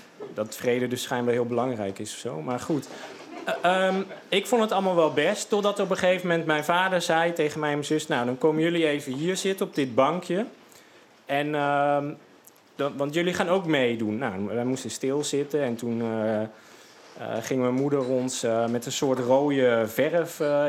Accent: Dutch